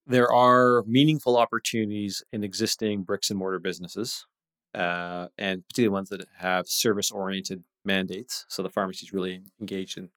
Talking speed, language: 150 wpm, English